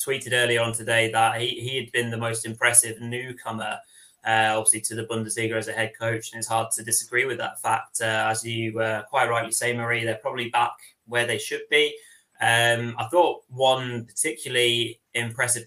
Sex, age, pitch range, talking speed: male, 20-39, 115-120 Hz, 195 wpm